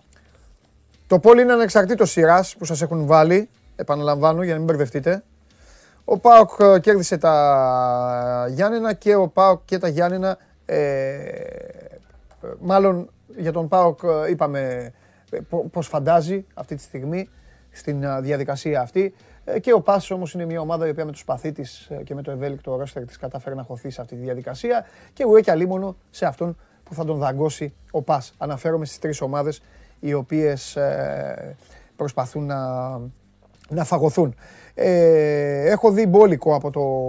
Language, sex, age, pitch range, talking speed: Greek, male, 30-49, 135-185 Hz, 150 wpm